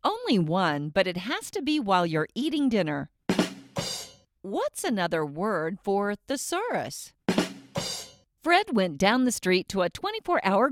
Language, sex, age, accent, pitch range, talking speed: English, female, 50-69, American, 175-285 Hz, 135 wpm